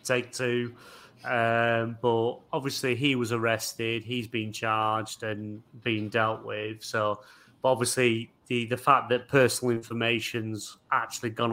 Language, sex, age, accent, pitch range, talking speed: English, male, 30-49, British, 110-125 Hz, 135 wpm